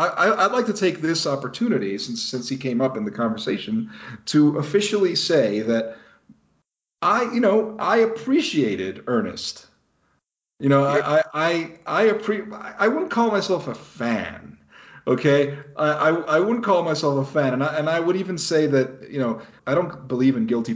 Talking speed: 180 wpm